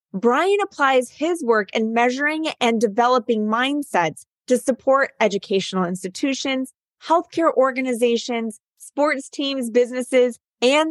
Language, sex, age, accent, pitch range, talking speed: English, female, 20-39, American, 210-270 Hz, 105 wpm